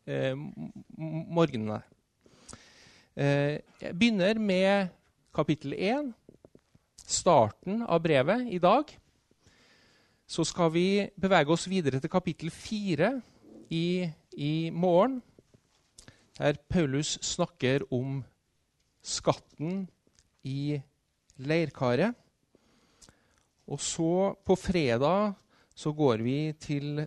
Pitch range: 125-170 Hz